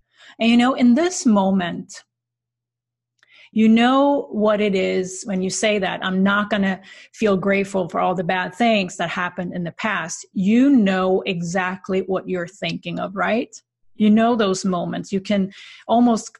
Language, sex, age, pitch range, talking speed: English, female, 30-49, 180-225 Hz, 170 wpm